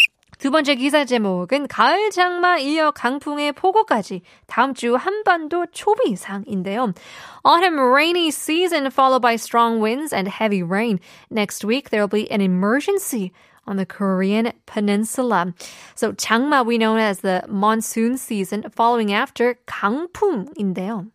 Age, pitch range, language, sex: 20-39, 200-275 Hz, Korean, female